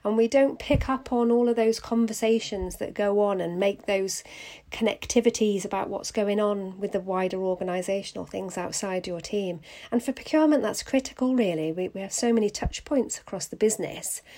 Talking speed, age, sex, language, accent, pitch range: 190 wpm, 40-59, female, English, British, 180-210 Hz